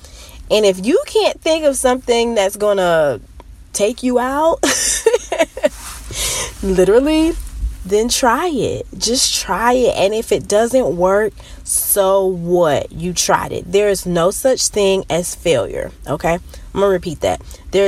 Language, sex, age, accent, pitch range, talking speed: English, female, 20-39, American, 180-245 Hz, 150 wpm